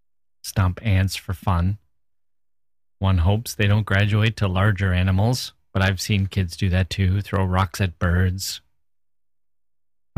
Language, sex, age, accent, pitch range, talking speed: English, male, 30-49, American, 85-100 Hz, 140 wpm